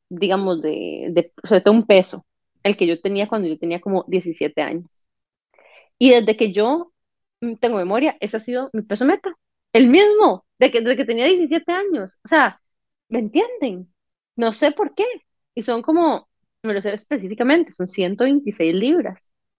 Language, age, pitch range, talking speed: Spanish, 20-39, 195-265 Hz, 170 wpm